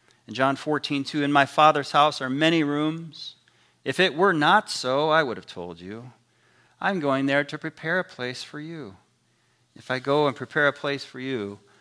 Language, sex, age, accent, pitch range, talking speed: English, male, 40-59, American, 110-145 Hz, 200 wpm